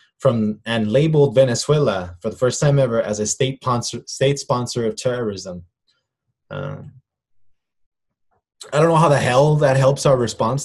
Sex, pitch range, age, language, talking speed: male, 110-140 Hz, 20-39, English, 150 wpm